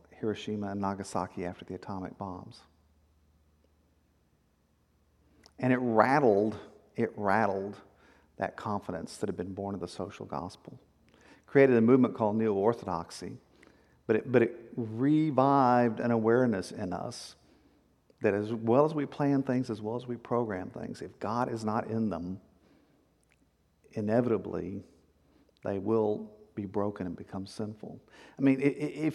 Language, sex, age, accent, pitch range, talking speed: English, male, 50-69, American, 105-130 Hz, 135 wpm